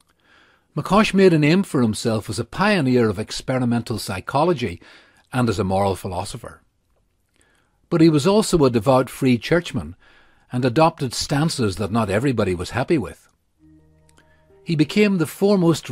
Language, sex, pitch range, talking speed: English, male, 105-140 Hz, 145 wpm